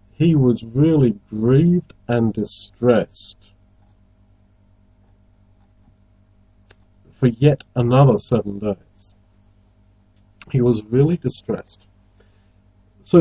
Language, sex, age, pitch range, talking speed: English, male, 40-59, 100-125 Hz, 75 wpm